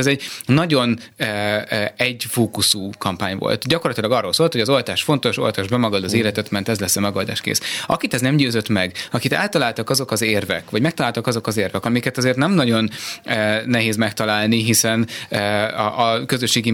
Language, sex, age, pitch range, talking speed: Hungarian, male, 30-49, 110-130 Hz, 170 wpm